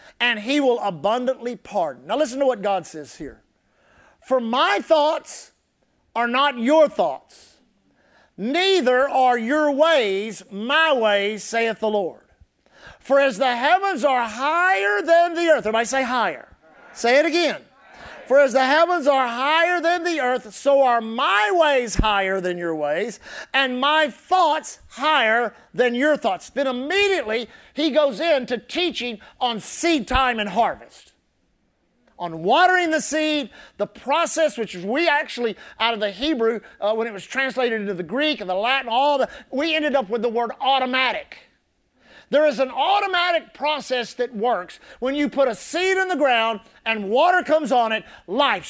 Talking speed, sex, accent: 165 wpm, male, American